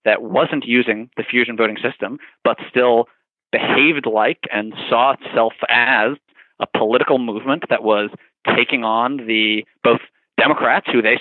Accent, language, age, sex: American, English, 30-49, male